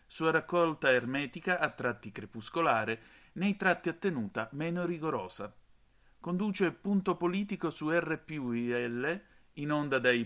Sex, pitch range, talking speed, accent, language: male, 115-175 Hz, 115 wpm, native, Italian